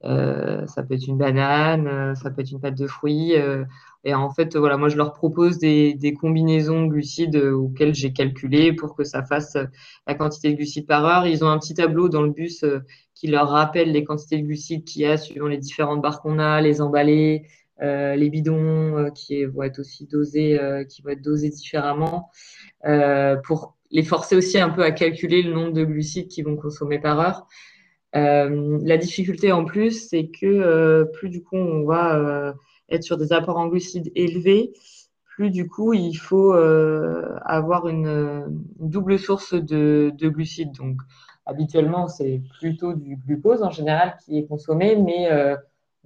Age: 20-39